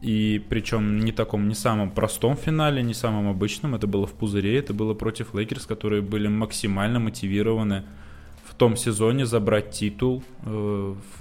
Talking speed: 160 wpm